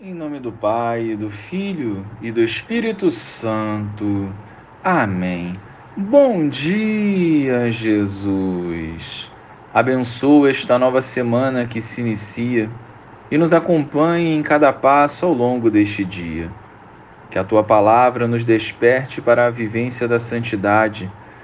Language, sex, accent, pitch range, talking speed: Portuguese, male, Brazilian, 110-155 Hz, 120 wpm